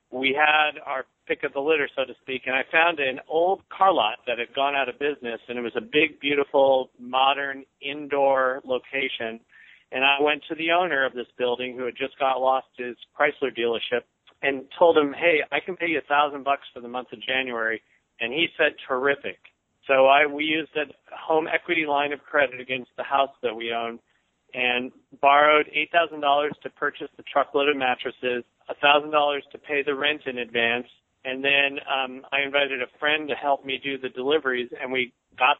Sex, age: male, 50-69